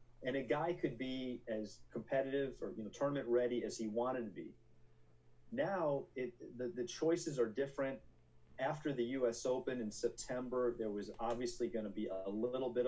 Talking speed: 180 wpm